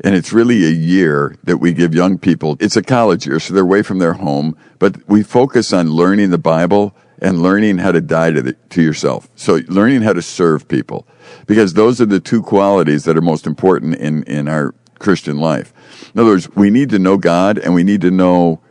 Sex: male